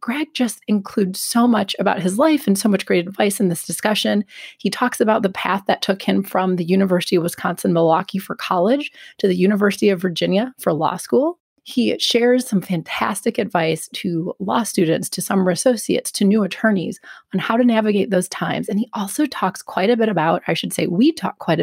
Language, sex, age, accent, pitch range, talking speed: English, female, 30-49, American, 180-235 Hz, 205 wpm